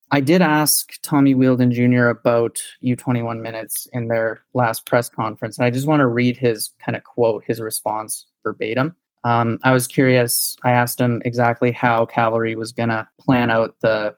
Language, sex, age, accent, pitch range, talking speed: English, male, 20-39, American, 115-130 Hz, 180 wpm